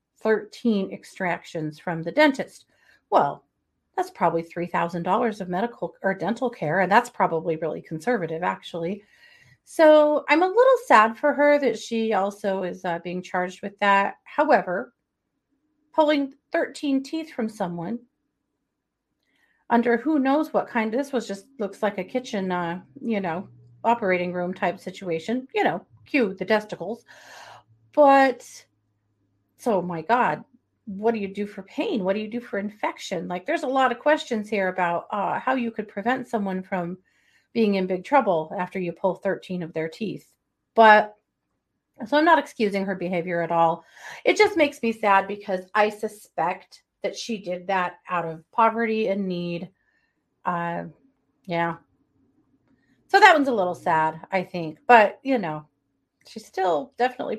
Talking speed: 155 wpm